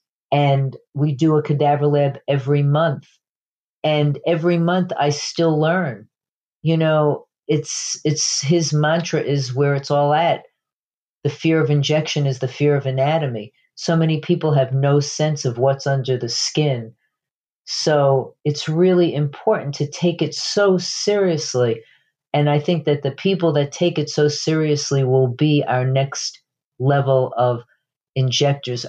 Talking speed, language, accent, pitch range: 150 wpm, English, American, 130-150 Hz